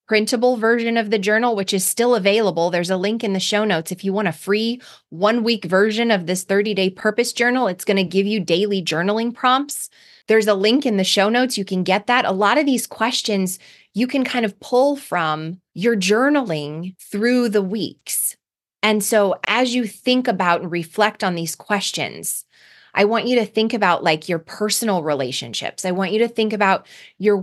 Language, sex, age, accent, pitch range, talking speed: English, female, 20-39, American, 180-230 Hz, 205 wpm